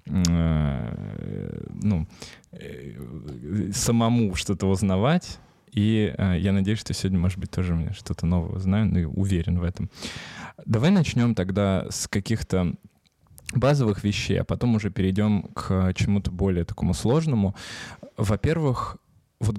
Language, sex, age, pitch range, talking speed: Russian, male, 20-39, 95-115 Hz, 120 wpm